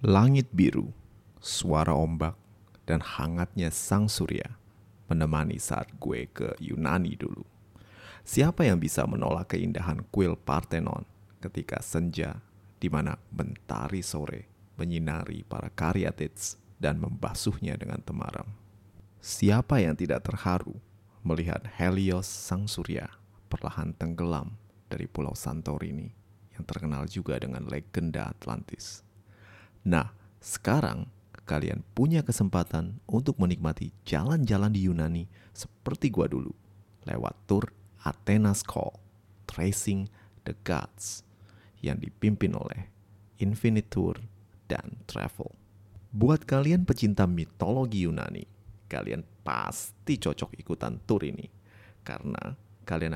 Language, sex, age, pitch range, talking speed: Indonesian, male, 30-49, 90-105 Hz, 105 wpm